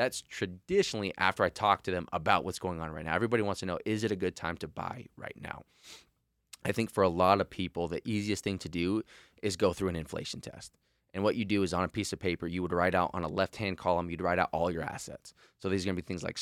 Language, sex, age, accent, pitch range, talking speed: English, male, 20-39, American, 85-100 Hz, 280 wpm